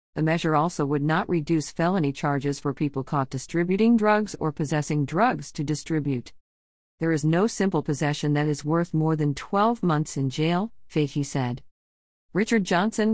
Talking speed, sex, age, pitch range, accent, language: 165 wpm, female, 50-69, 145-180 Hz, American, English